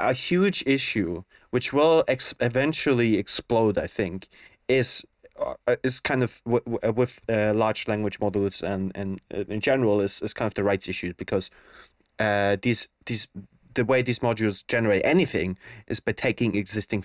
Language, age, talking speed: English, 30-49, 165 wpm